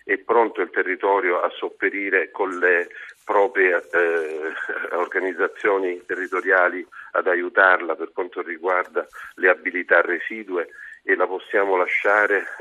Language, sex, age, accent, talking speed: Italian, male, 50-69, native, 115 wpm